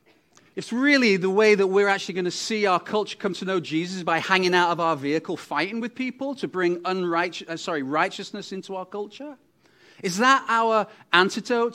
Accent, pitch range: British, 145-200 Hz